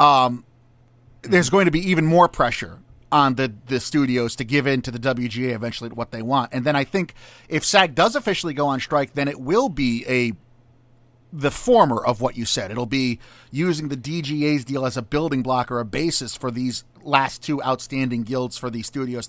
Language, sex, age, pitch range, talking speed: English, male, 30-49, 120-155 Hz, 210 wpm